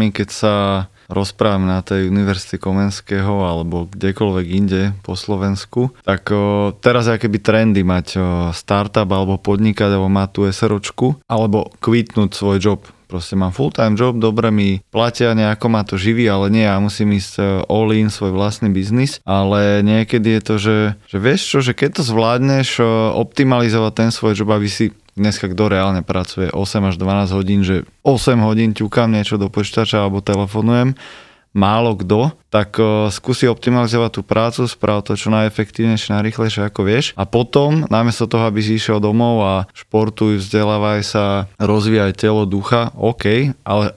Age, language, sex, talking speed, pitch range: 20-39, Slovak, male, 170 wpm, 100-115 Hz